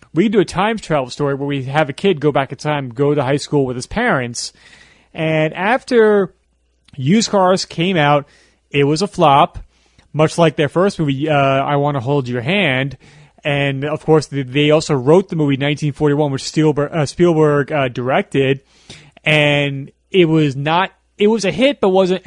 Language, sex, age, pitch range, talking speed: English, male, 30-49, 140-175 Hz, 190 wpm